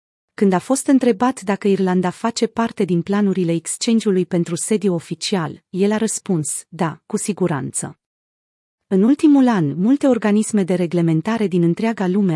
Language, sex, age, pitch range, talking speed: Romanian, female, 30-49, 175-220 Hz, 145 wpm